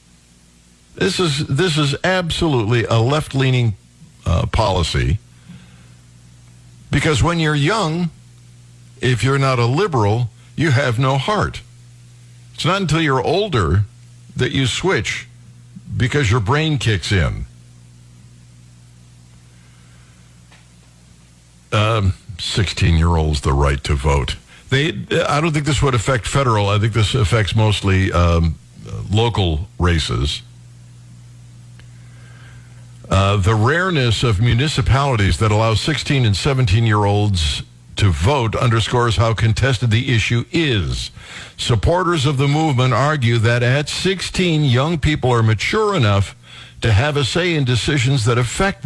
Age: 60-79